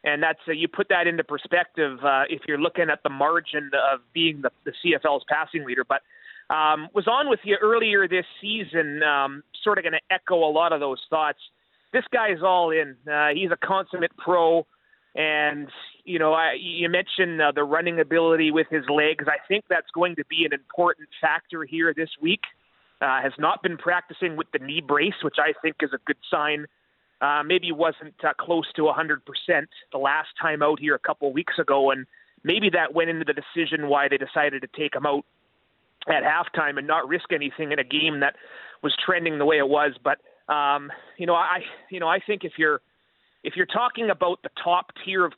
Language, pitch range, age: English, 150-175 Hz, 30-49